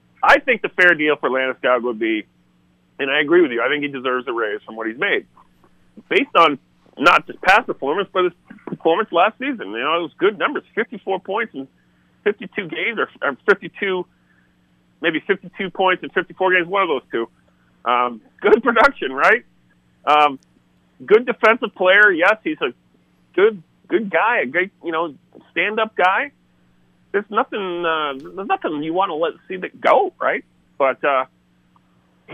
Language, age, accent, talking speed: English, 40-59, American, 175 wpm